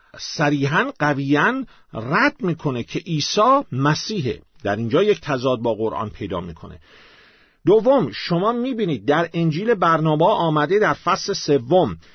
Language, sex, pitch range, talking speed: Persian, male, 135-195 Hz, 125 wpm